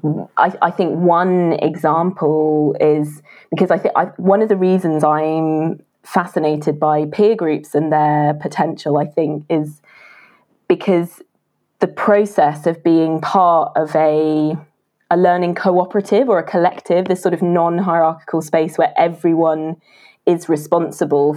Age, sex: 20-39, female